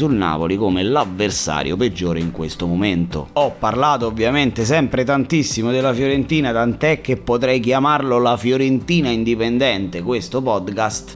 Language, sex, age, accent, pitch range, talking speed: Italian, male, 30-49, native, 90-125 Hz, 125 wpm